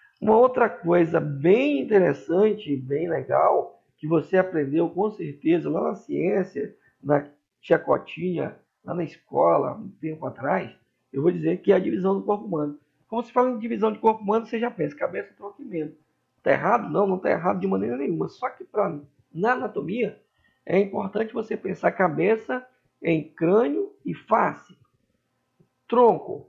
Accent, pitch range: Brazilian, 140-205 Hz